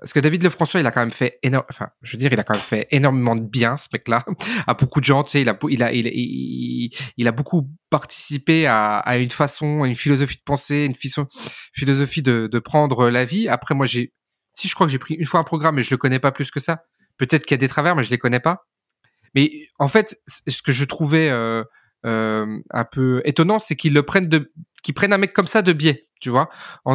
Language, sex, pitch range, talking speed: French, male, 125-165 Hz, 265 wpm